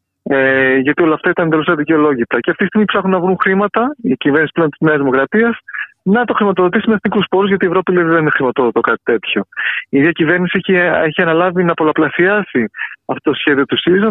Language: Greek